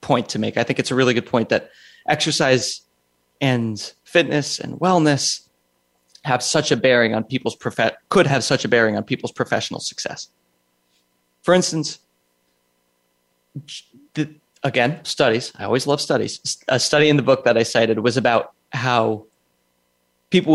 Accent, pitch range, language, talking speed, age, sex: American, 105-140 Hz, English, 150 wpm, 30-49, male